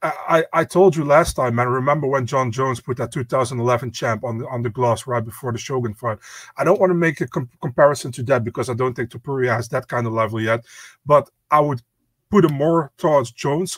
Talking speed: 250 wpm